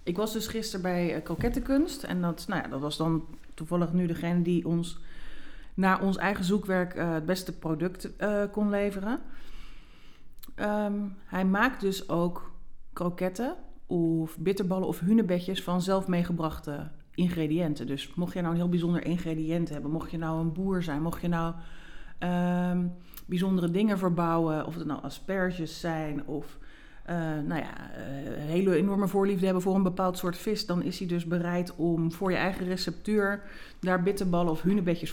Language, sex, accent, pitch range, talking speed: English, female, Dutch, 165-200 Hz, 160 wpm